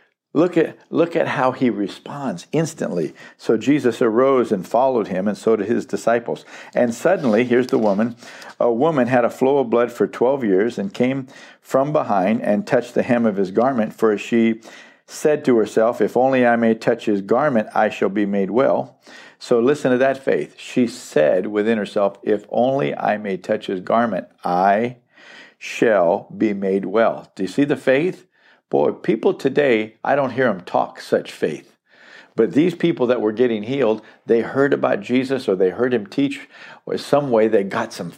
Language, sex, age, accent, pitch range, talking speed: English, male, 50-69, American, 105-135 Hz, 190 wpm